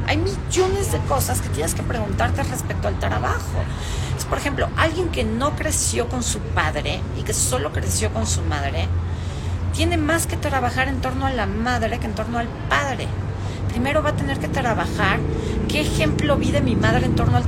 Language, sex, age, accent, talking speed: Spanish, female, 40-59, Mexican, 190 wpm